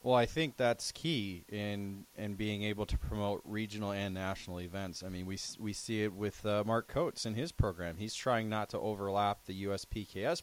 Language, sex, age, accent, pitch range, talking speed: English, male, 30-49, American, 95-120 Hz, 200 wpm